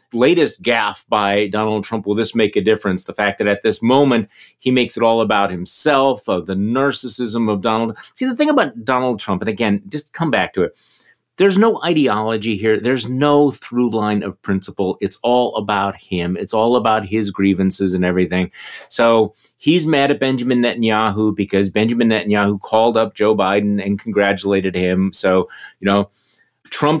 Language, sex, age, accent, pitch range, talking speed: English, male, 30-49, American, 100-135 Hz, 180 wpm